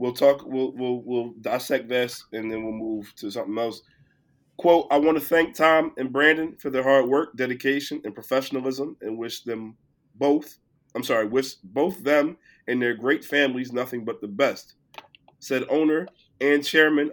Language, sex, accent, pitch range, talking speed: English, male, American, 130-155 Hz, 175 wpm